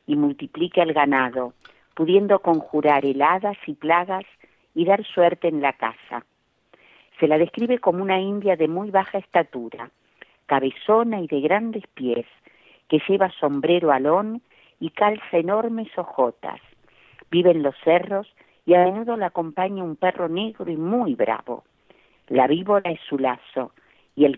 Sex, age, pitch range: female, 50-69, 140-195 Hz